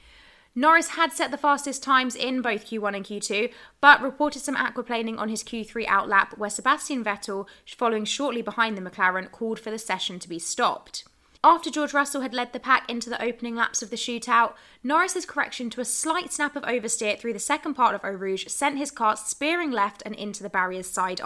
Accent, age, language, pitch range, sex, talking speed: British, 20-39, English, 200-260 Hz, female, 205 wpm